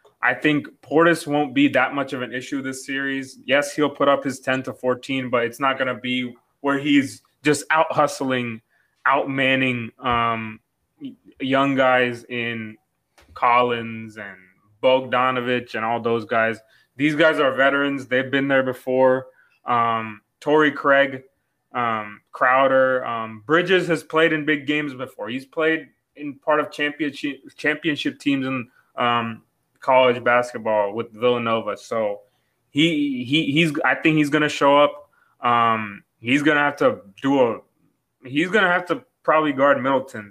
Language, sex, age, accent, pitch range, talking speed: English, male, 20-39, American, 120-140 Hz, 150 wpm